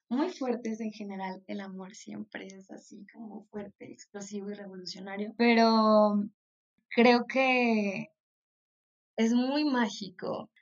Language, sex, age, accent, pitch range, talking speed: Spanish, female, 20-39, Mexican, 205-245 Hz, 115 wpm